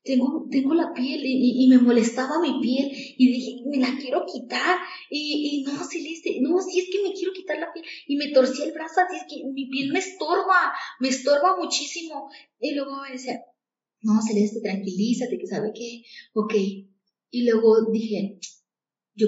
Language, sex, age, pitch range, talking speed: Spanish, female, 20-39, 235-320 Hz, 190 wpm